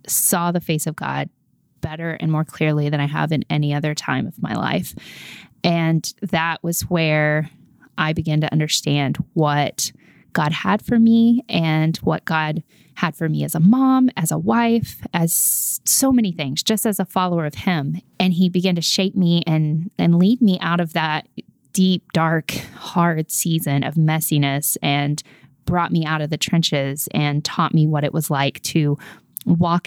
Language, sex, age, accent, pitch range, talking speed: English, female, 20-39, American, 150-180 Hz, 180 wpm